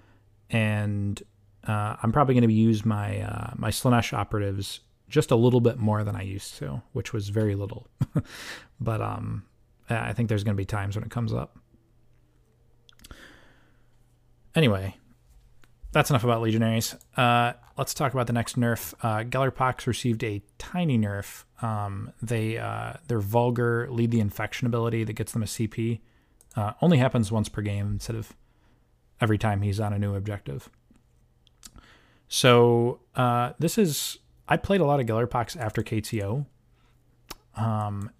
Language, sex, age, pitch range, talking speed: English, male, 20-39, 105-120 Hz, 155 wpm